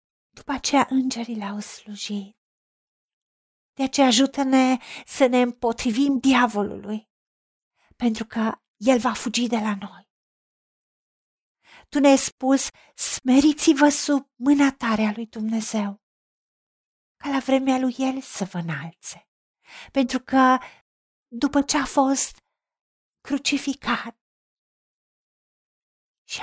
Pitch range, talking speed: 225-275 Hz, 105 wpm